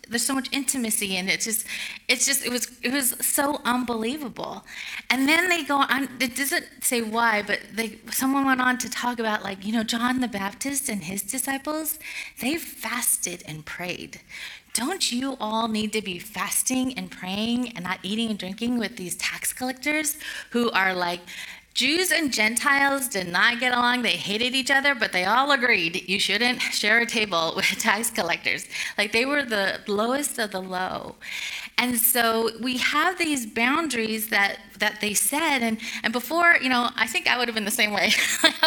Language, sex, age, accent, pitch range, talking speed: English, female, 30-49, American, 205-270 Hz, 190 wpm